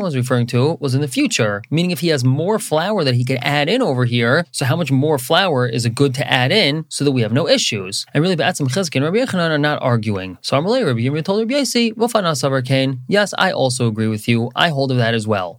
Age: 20-39